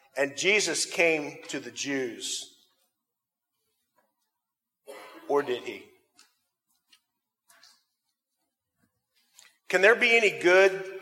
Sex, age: male, 50-69